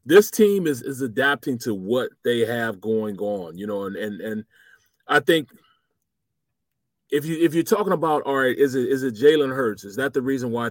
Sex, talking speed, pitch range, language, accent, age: male, 205 wpm, 135-185 Hz, English, American, 30-49